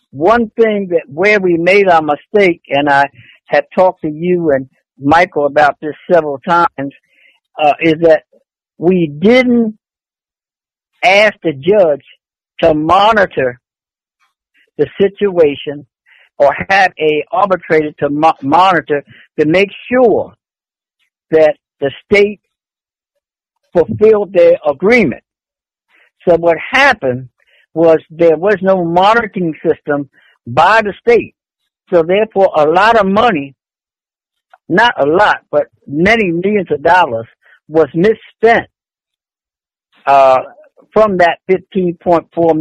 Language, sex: English, male